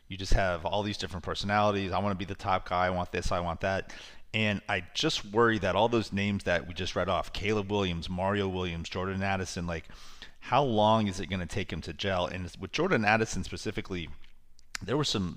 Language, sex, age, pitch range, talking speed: English, male, 30-49, 90-105 Hz, 220 wpm